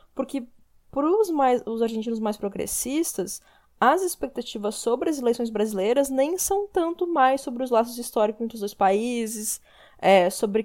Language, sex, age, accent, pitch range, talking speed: Portuguese, female, 10-29, Brazilian, 205-270 Hz, 145 wpm